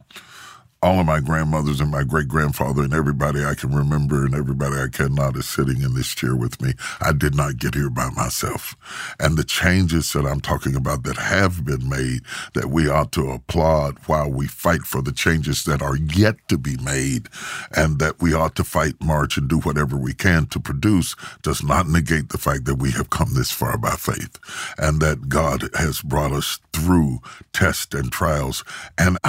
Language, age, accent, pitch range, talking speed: English, 60-79, American, 70-80 Hz, 195 wpm